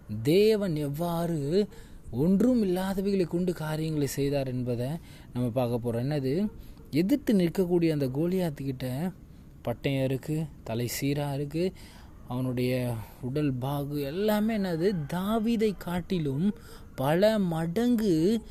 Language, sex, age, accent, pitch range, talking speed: Tamil, male, 20-39, native, 140-190 Hz, 90 wpm